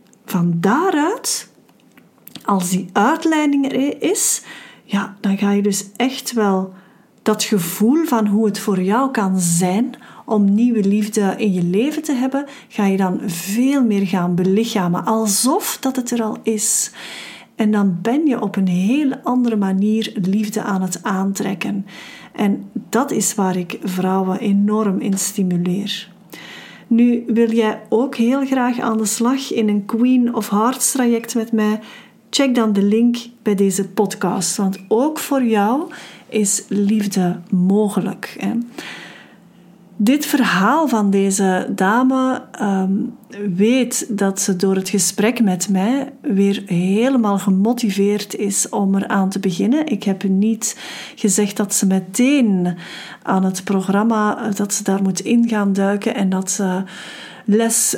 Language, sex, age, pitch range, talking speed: Dutch, female, 40-59, 195-240 Hz, 145 wpm